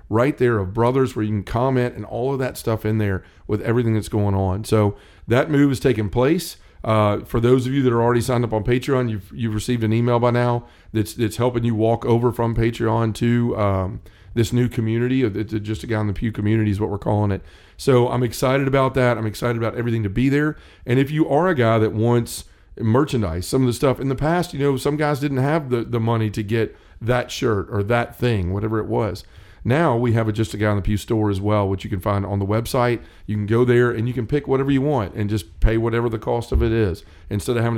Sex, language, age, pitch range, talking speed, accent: male, English, 40-59, 105-125 Hz, 255 wpm, American